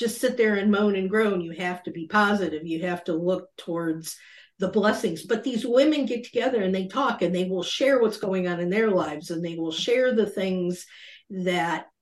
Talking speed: 220 wpm